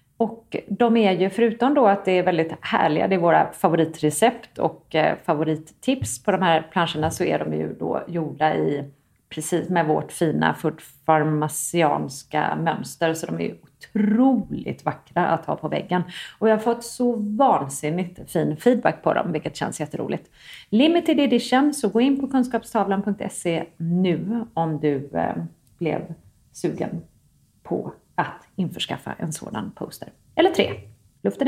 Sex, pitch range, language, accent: female, 165-240 Hz, English, Swedish